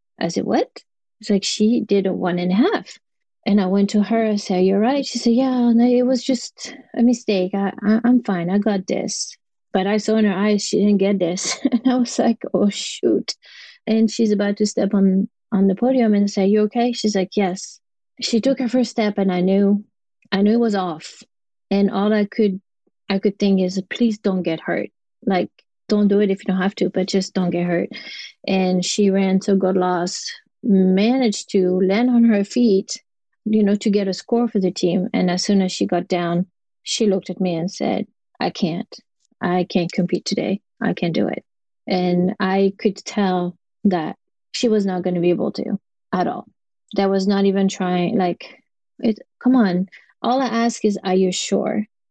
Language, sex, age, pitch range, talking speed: English, female, 30-49, 190-225 Hz, 210 wpm